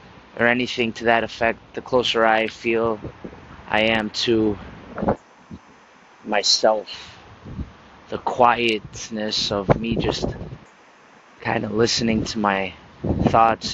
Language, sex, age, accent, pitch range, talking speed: English, male, 20-39, American, 105-115 Hz, 105 wpm